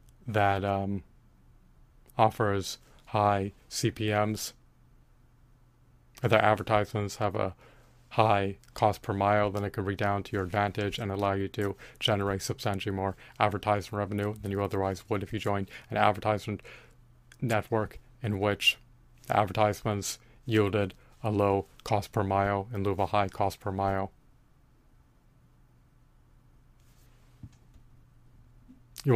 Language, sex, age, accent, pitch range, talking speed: English, male, 30-49, American, 100-120 Hz, 120 wpm